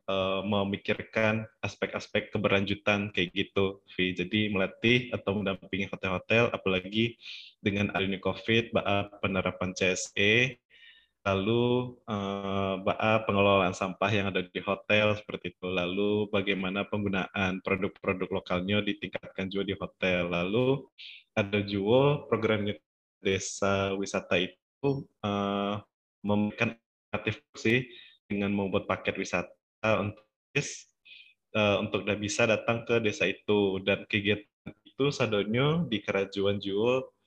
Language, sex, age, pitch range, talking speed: Indonesian, male, 20-39, 95-110 Hz, 100 wpm